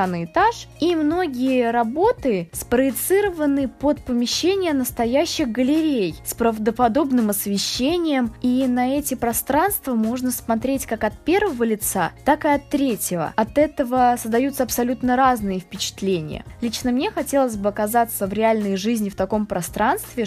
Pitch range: 220-275 Hz